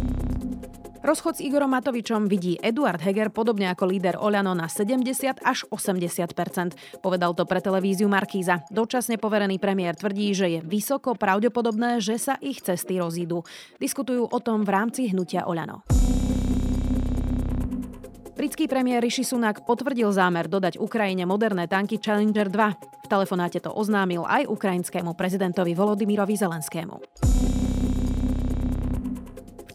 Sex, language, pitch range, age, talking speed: female, Slovak, 175-225 Hz, 30-49, 125 wpm